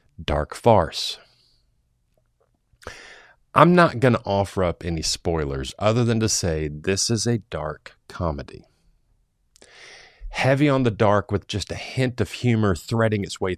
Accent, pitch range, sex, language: American, 95-140 Hz, male, English